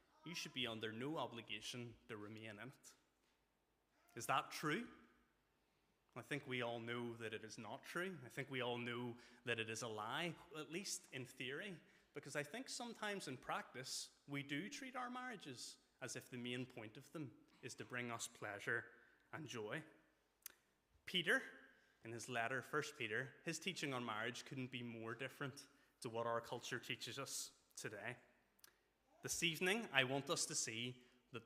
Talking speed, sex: 175 wpm, male